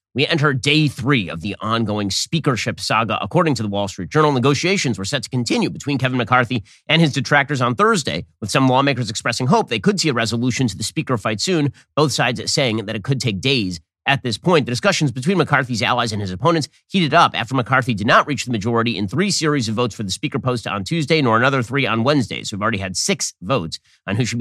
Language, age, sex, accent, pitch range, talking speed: English, 30-49, male, American, 110-150 Hz, 235 wpm